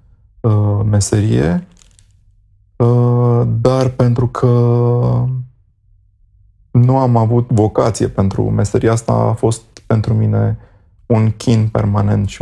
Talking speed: 90 wpm